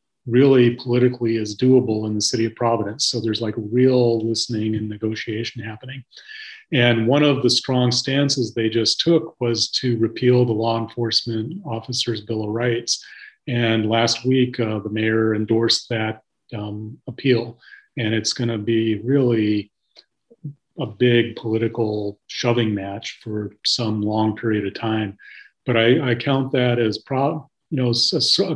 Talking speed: 155 wpm